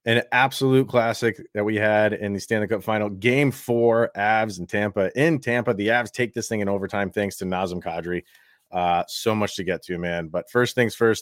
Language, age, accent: English, 30-49, American